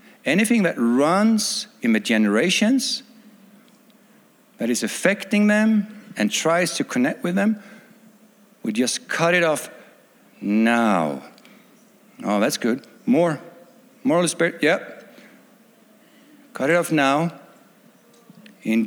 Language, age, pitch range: English, 50-69, 195-235 Hz